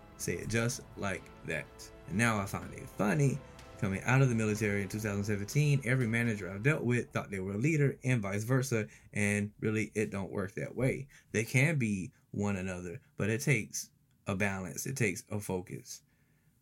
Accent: American